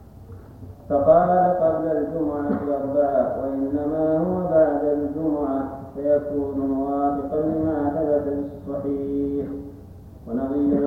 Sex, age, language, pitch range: male, 40-59, Arabic, 135-145 Hz